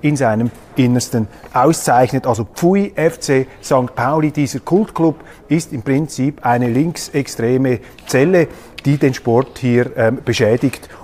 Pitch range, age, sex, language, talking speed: 120-145 Hz, 30-49, male, German, 125 wpm